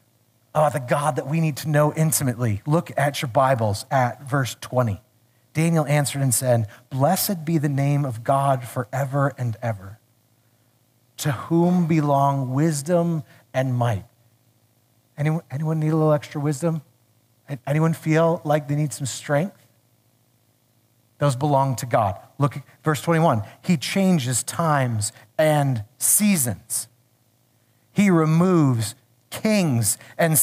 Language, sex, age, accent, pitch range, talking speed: English, male, 30-49, American, 120-165 Hz, 130 wpm